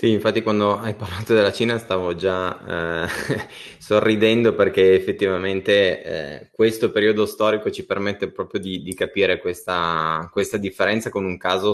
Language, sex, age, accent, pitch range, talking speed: Italian, male, 20-39, native, 90-105 Hz, 150 wpm